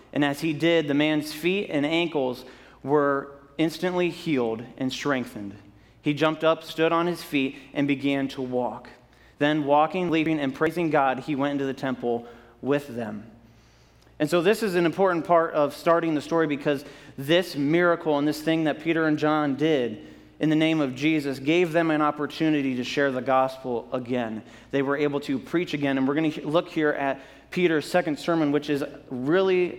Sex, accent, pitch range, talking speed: male, American, 130-155 Hz, 185 wpm